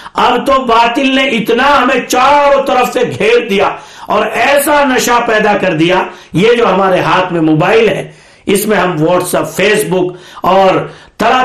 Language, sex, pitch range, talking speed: Urdu, male, 190-260 Hz, 175 wpm